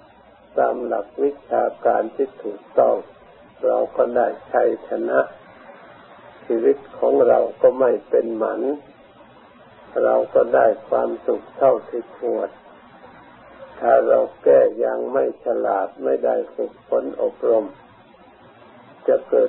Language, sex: Thai, male